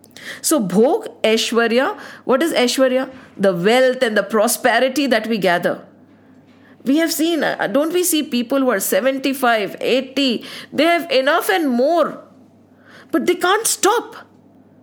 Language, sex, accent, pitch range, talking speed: English, female, Indian, 230-315 Hz, 140 wpm